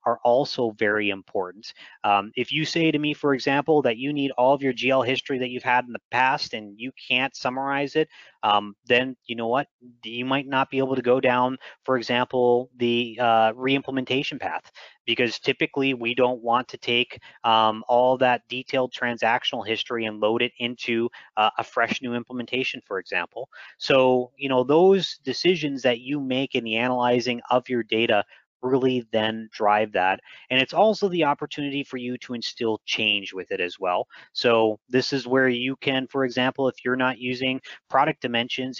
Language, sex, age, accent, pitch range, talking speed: English, male, 30-49, American, 120-135 Hz, 185 wpm